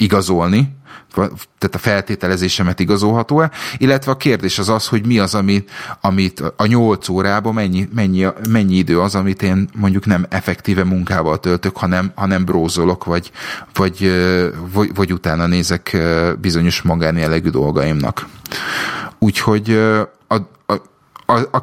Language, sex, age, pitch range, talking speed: Hungarian, male, 30-49, 90-110 Hz, 130 wpm